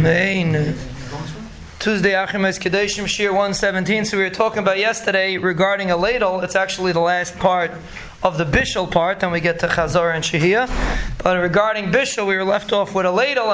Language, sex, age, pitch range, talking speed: English, male, 20-39, 175-210 Hz, 175 wpm